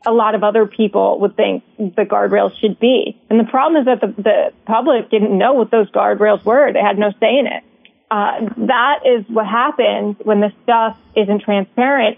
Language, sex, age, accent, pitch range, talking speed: English, female, 30-49, American, 210-245 Hz, 200 wpm